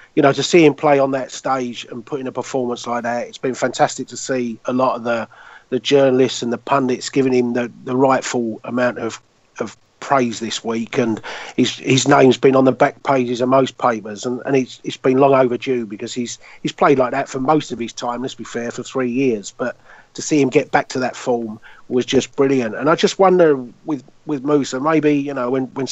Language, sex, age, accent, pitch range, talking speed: English, male, 40-59, British, 120-140 Hz, 235 wpm